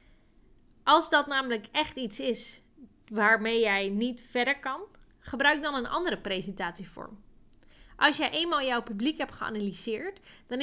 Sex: female